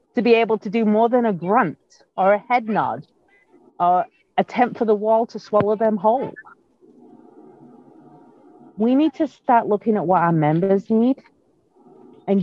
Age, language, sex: 40-59, English, female